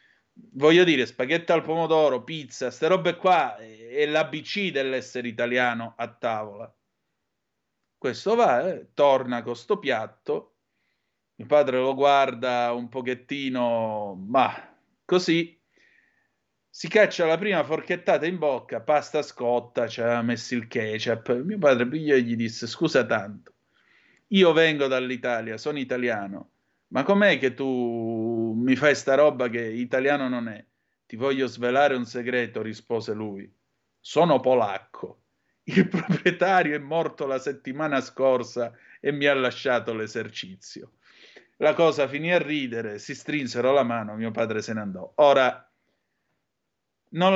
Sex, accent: male, native